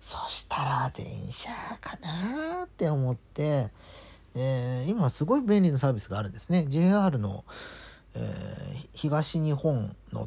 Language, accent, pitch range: Japanese, native, 100-150 Hz